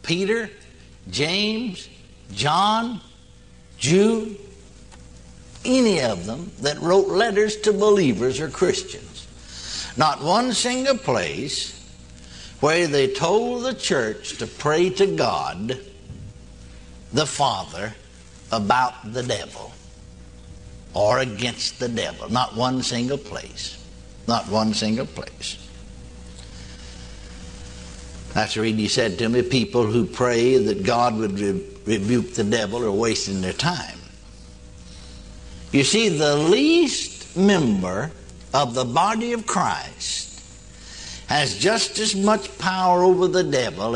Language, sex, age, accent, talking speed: English, male, 60-79, American, 110 wpm